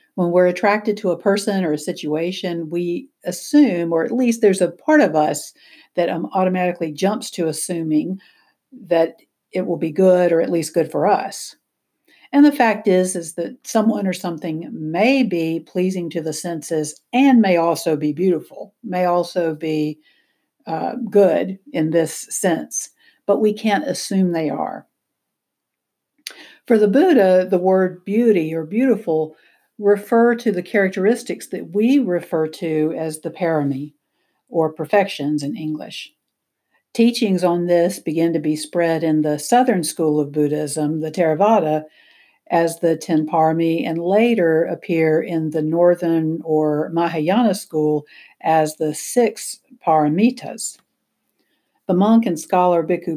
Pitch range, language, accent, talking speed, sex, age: 160-205 Hz, English, American, 145 wpm, female, 60-79